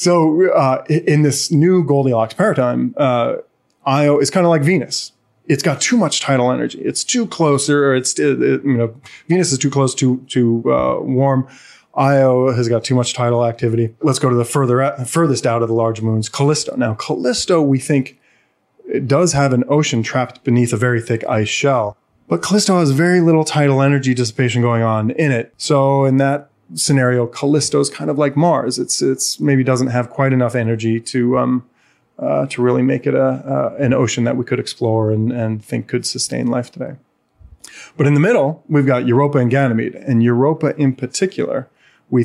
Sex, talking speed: male, 195 wpm